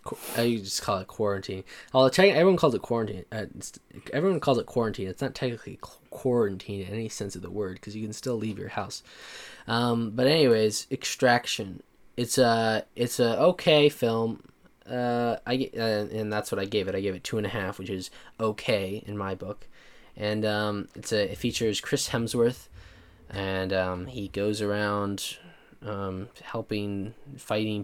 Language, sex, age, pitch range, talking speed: English, male, 10-29, 100-115 Hz, 180 wpm